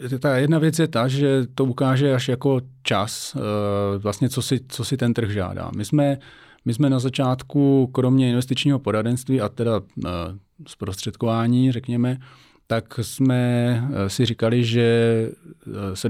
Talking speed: 140 wpm